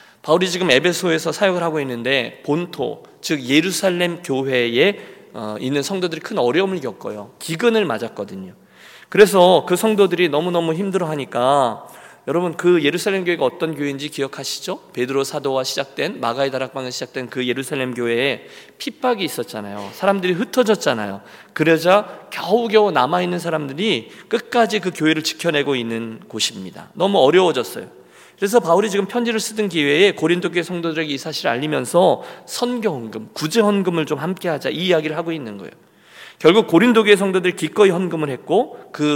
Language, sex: Korean, male